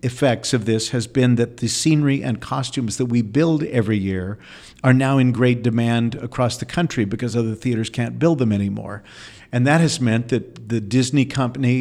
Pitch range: 110-135 Hz